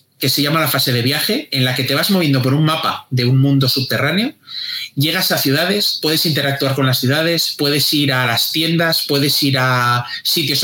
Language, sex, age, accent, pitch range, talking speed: Spanish, male, 30-49, Spanish, 120-155 Hz, 210 wpm